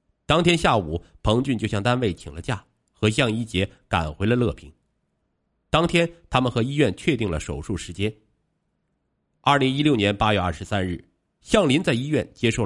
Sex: male